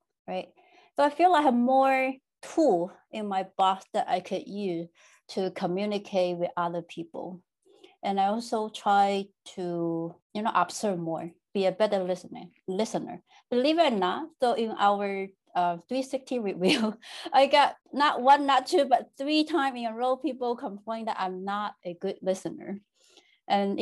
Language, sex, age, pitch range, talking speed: English, female, 30-49, 190-265 Hz, 165 wpm